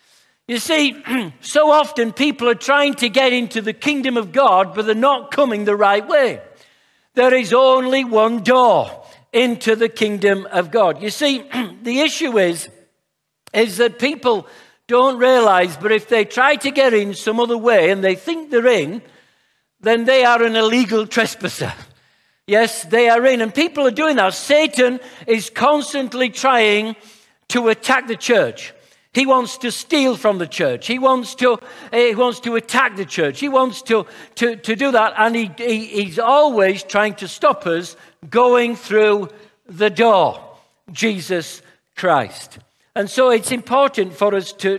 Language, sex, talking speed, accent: English, male, 165 wpm, British